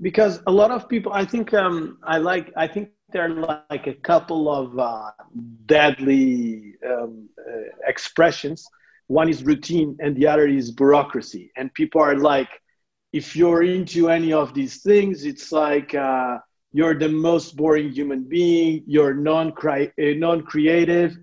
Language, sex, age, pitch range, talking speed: English, male, 40-59, 150-175 Hz, 150 wpm